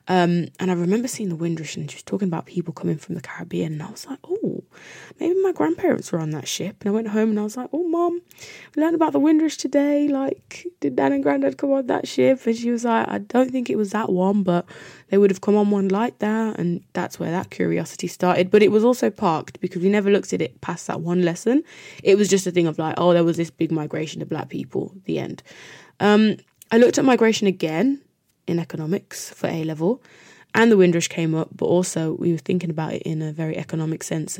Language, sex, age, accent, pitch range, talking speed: English, female, 20-39, British, 160-220 Hz, 245 wpm